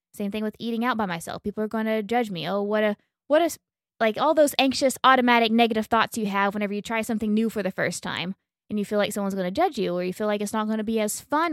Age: 20-39